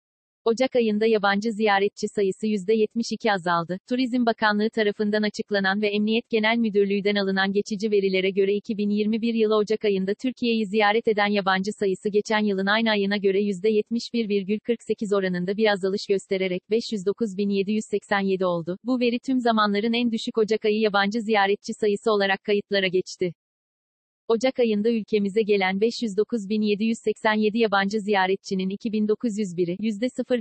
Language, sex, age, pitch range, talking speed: Turkish, female, 40-59, 200-230 Hz, 120 wpm